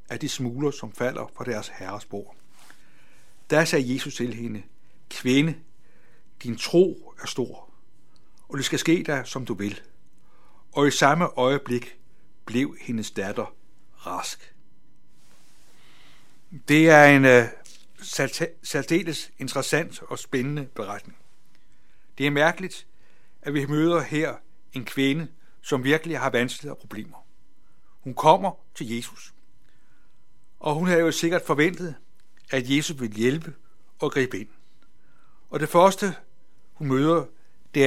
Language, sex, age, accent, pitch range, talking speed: Danish, male, 60-79, native, 130-160 Hz, 125 wpm